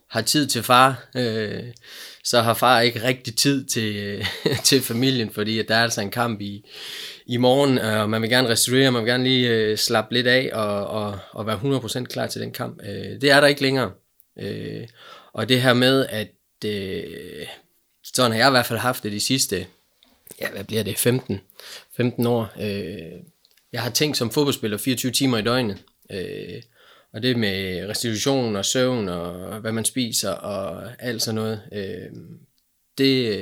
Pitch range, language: 105-130 Hz, Danish